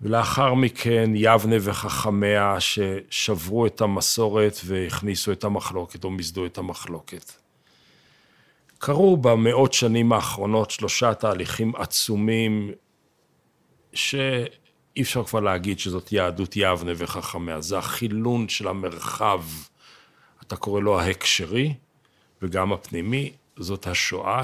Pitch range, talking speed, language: 95-120 Hz, 100 wpm, Hebrew